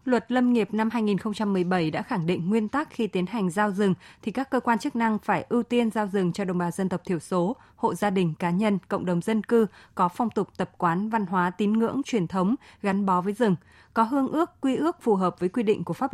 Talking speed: 255 wpm